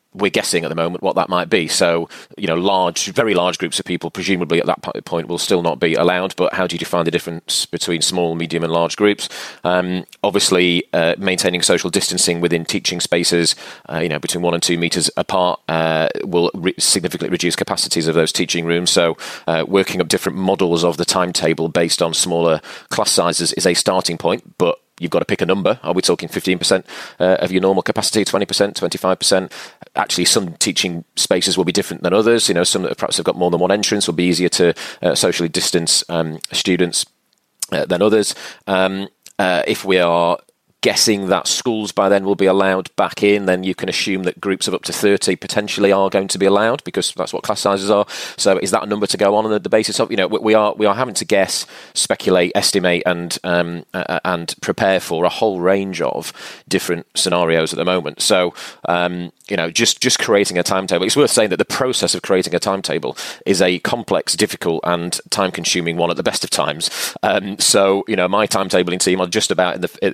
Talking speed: 220 wpm